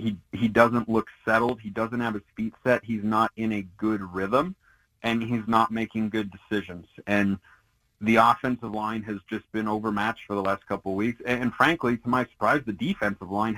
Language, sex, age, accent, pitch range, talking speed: English, male, 30-49, American, 105-125 Hz, 205 wpm